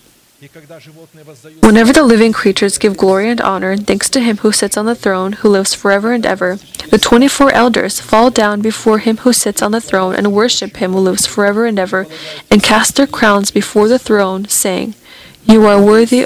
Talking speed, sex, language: 190 wpm, female, English